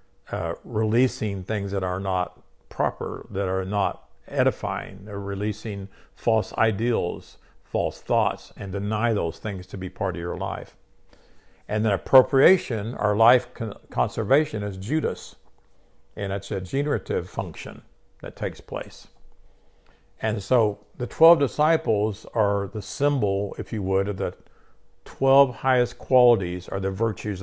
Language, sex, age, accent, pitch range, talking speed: English, male, 50-69, American, 100-125 Hz, 135 wpm